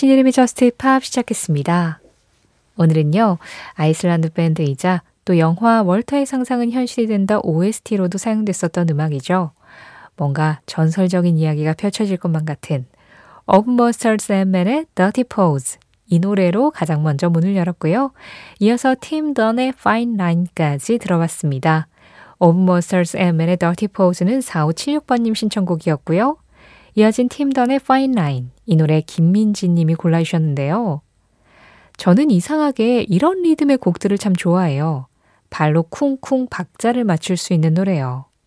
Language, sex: Korean, female